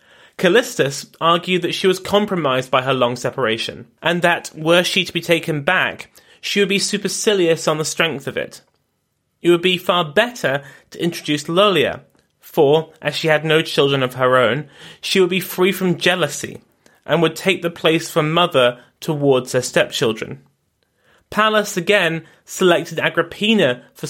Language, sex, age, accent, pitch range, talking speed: English, male, 30-49, British, 145-180 Hz, 160 wpm